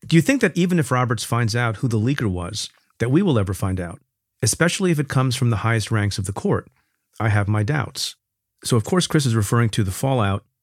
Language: English